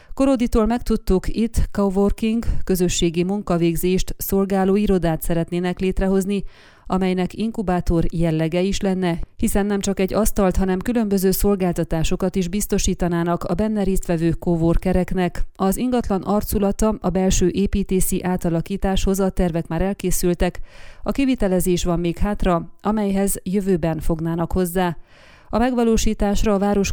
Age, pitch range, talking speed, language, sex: 30-49, 175-200 Hz, 115 wpm, Hungarian, female